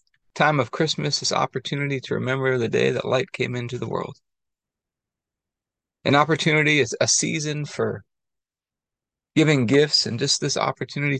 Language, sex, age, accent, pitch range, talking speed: English, male, 30-49, American, 115-140 Hz, 145 wpm